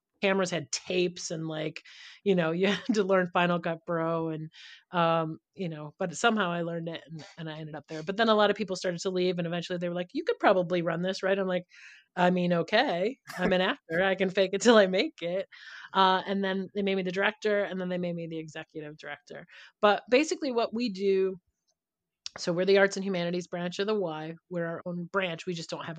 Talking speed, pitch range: 240 wpm, 165-195 Hz